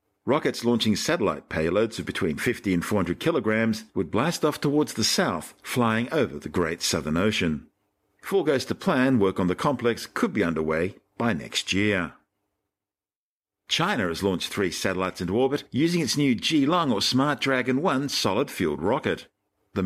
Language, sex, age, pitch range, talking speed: English, male, 50-69, 90-125 Hz, 165 wpm